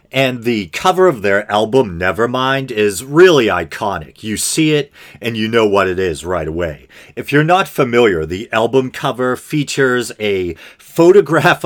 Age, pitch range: 40-59, 100-145 Hz